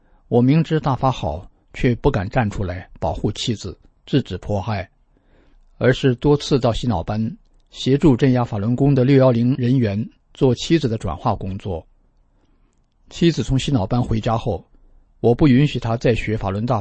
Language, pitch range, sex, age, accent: Chinese, 100-130 Hz, male, 50-69, native